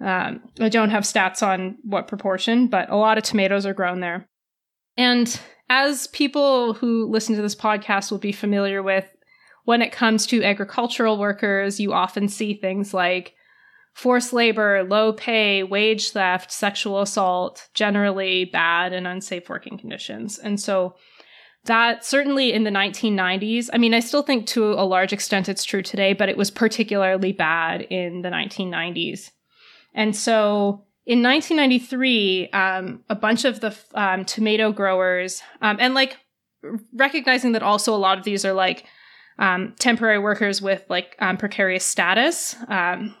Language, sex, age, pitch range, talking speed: English, female, 20-39, 195-230 Hz, 155 wpm